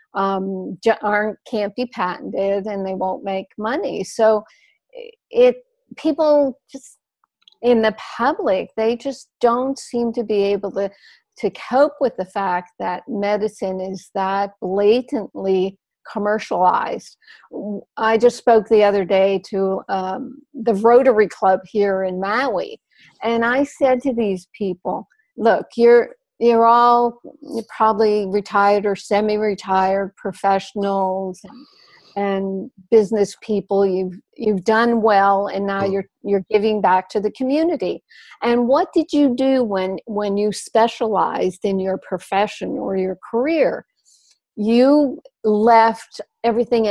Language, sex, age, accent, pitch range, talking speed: English, female, 50-69, American, 195-240 Hz, 135 wpm